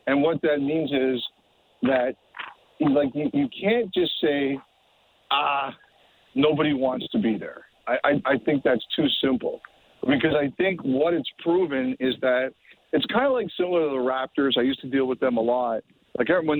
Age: 50-69